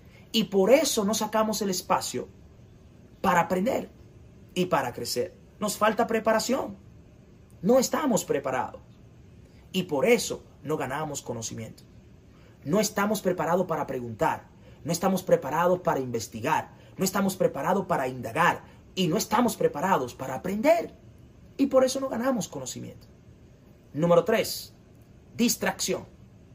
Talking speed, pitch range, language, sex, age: 120 wpm, 175-240 Hz, Spanish, male, 30-49